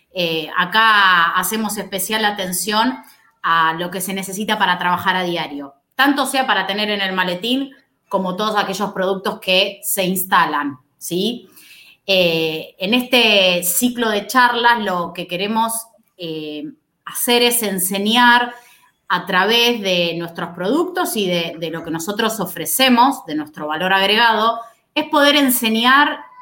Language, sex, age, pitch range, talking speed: Spanish, female, 20-39, 180-240 Hz, 140 wpm